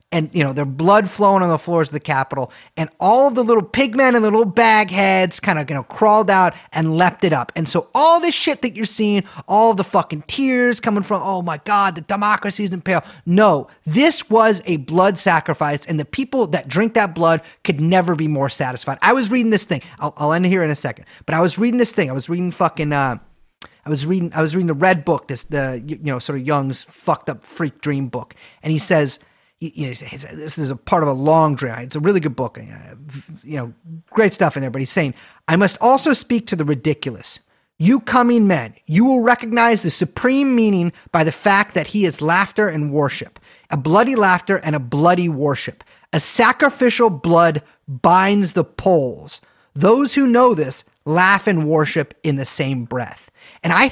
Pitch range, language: 150-210 Hz, English